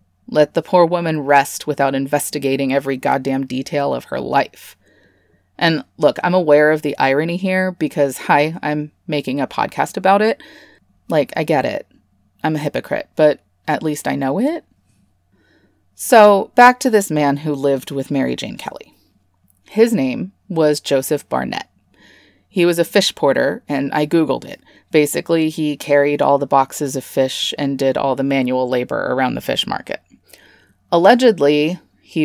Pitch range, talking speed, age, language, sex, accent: 135-160 Hz, 160 wpm, 30-49, English, female, American